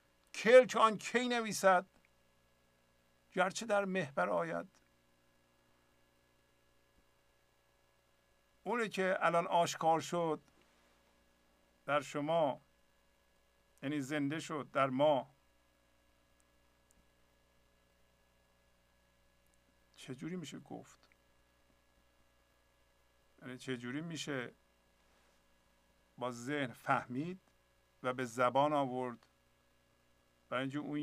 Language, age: Persian, 50-69